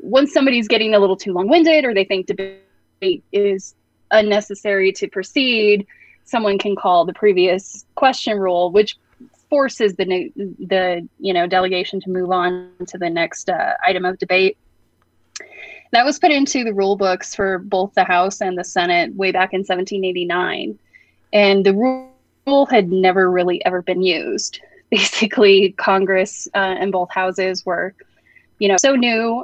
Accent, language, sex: American, English, female